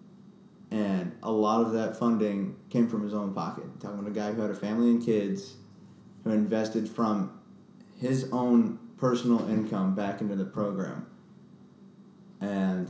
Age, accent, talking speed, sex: 30-49, American, 160 wpm, male